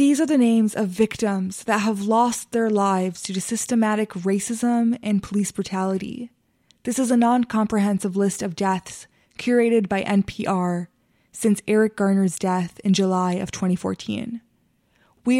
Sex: female